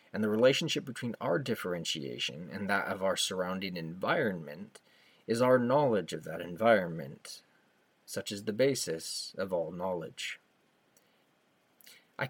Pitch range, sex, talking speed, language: 95-130 Hz, male, 125 wpm, English